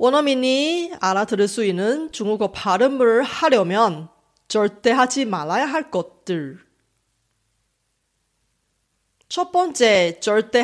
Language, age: Korean, 30-49